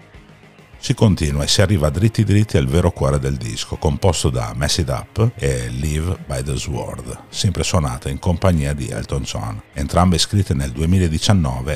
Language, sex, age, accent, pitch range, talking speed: Italian, male, 50-69, native, 75-100 Hz, 170 wpm